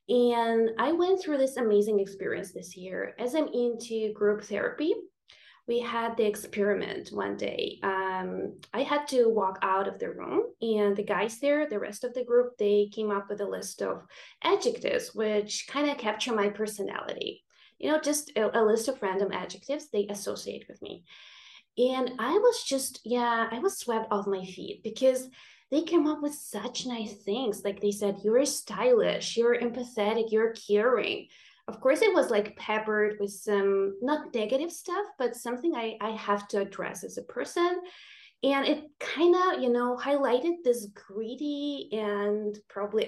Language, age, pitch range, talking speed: English, 20-39, 210-290 Hz, 175 wpm